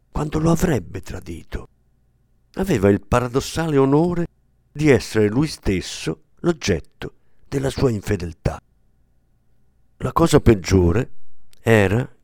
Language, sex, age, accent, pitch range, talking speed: Italian, male, 50-69, native, 95-135 Hz, 100 wpm